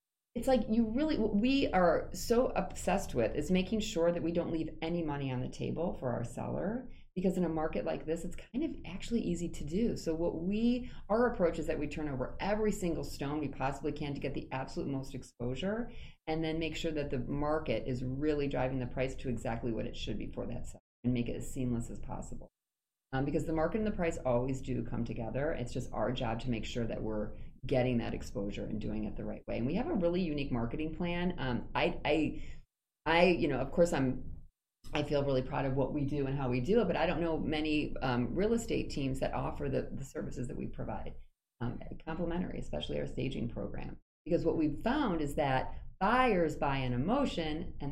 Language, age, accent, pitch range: English, 30-49, American, 125-170 Hz